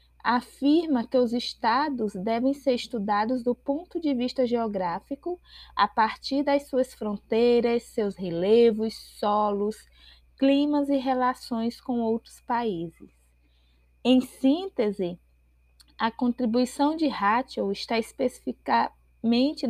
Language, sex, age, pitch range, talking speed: Portuguese, female, 20-39, 215-260 Hz, 105 wpm